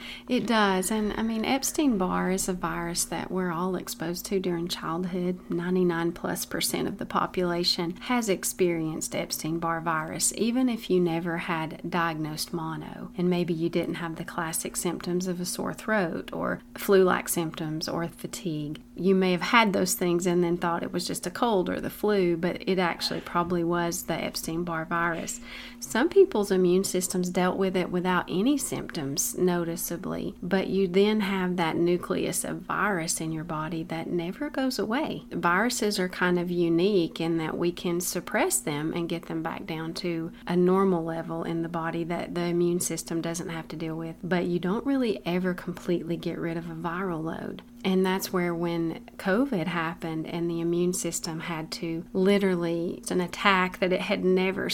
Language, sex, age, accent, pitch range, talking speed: English, female, 40-59, American, 170-195 Hz, 180 wpm